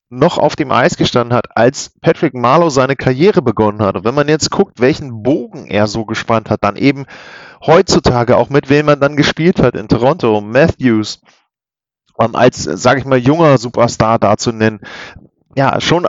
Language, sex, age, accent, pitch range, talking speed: German, male, 40-59, German, 120-150 Hz, 175 wpm